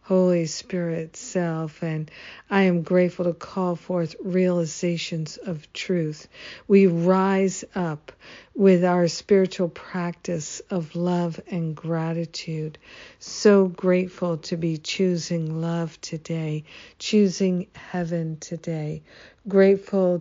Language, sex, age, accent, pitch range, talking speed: English, female, 50-69, American, 165-190 Hz, 105 wpm